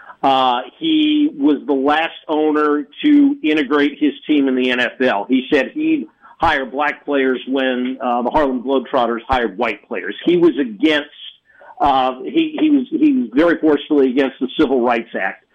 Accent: American